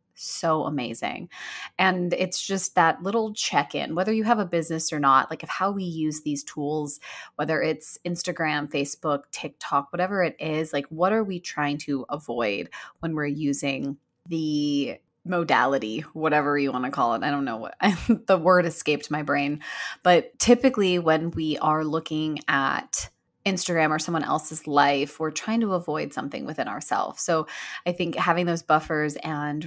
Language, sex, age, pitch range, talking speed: English, female, 20-39, 145-170 Hz, 170 wpm